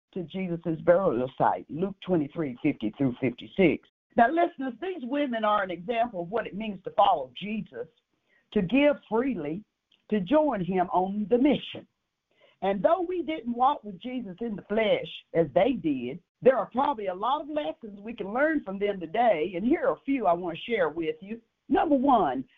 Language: English